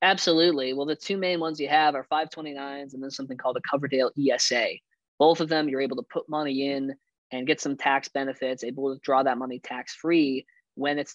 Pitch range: 130-165 Hz